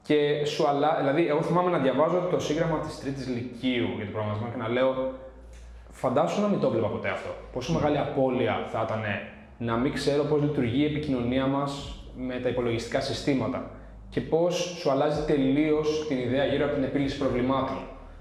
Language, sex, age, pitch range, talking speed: Greek, male, 20-39, 120-150 Hz, 180 wpm